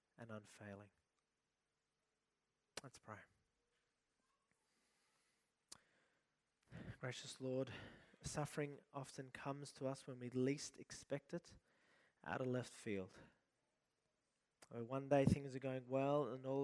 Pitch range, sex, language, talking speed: 120-140 Hz, male, English, 100 wpm